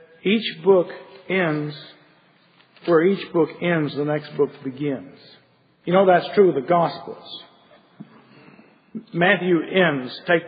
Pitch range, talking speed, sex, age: 145-175 Hz, 115 wpm, male, 50-69